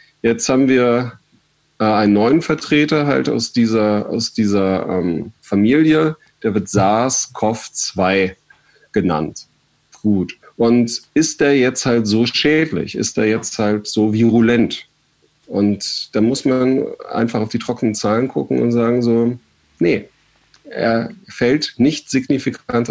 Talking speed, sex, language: 130 wpm, male, German